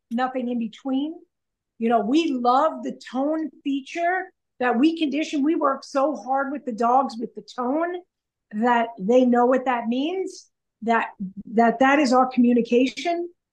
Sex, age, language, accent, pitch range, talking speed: female, 50-69, English, American, 235-300 Hz, 155 wpm